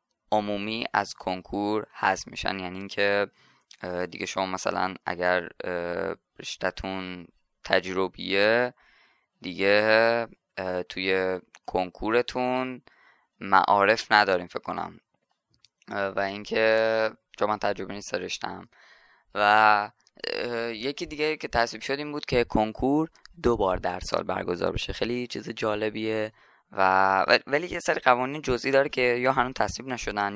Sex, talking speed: female, 115 wpm